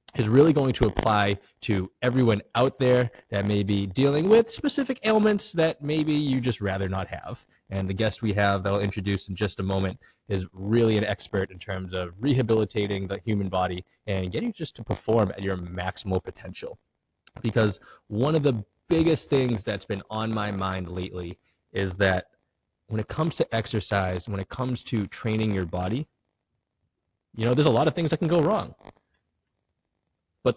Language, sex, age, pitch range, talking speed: English, male, 20-39, 100-135 Hz, 185 wpm